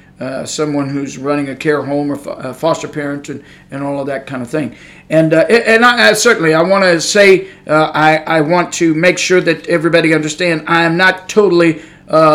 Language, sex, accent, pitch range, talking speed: English, male, American, 155-180 Hz, 215 wpm